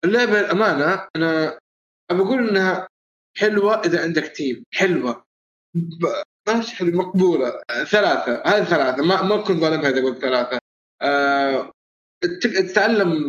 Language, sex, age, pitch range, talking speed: Arabic, male, 20-39, 140-185 Hz, 105 wpm